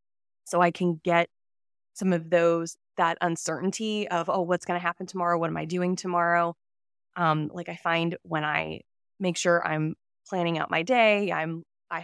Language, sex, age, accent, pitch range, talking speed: English, female, 20-39, American, 165-210 Hz, 185 wpm